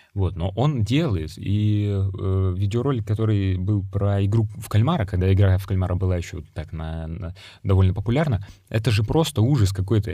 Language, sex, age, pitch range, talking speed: Russian, male, 20-39, 95-110 Hz, 180 wpm